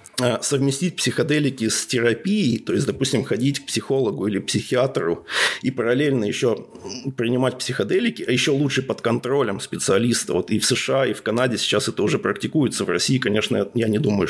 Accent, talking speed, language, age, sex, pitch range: native, 165 wpm, Russian, 20-39, male, 115-135 Hz